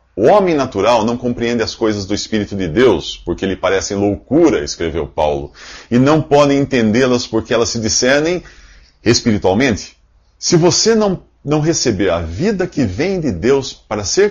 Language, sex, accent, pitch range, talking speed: Portuguese, male, Brazilian, 80-130 Hz, 165 wpm